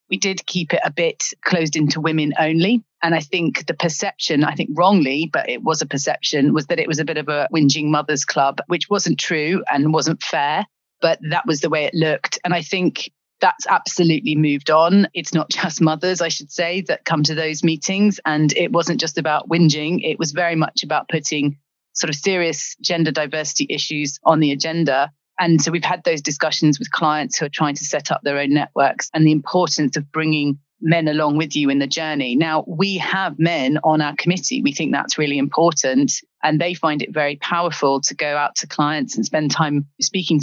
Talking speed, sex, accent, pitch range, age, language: 210 wpm, female, British, 150-175 Hz, 30-49, English